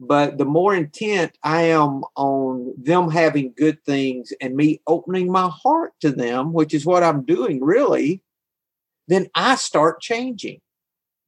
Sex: male